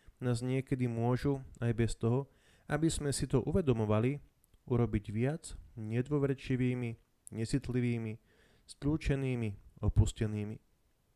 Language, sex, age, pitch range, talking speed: Slovak, male, 30-49, 105-125 Hz, 90 wpm